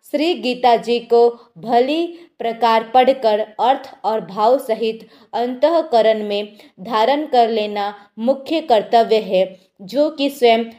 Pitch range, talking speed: 220-275 Hz, 115 wpm